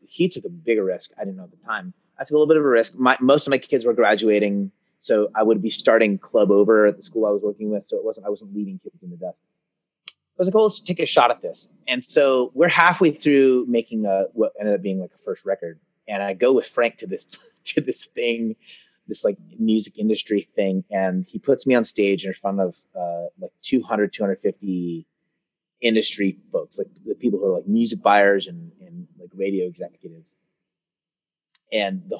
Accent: American